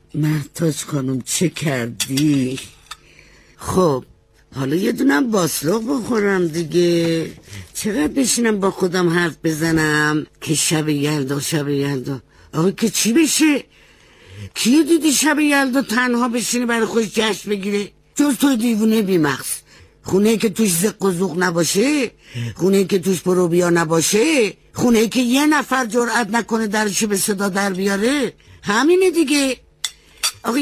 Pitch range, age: 145-225 Hz, 60-79